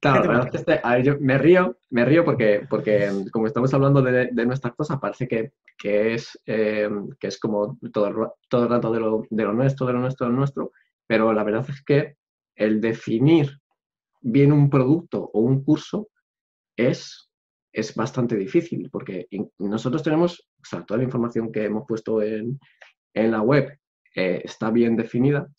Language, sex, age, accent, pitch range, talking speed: Spanish, male, 20-39, Spanish, 110-140 Hz, 170 wpm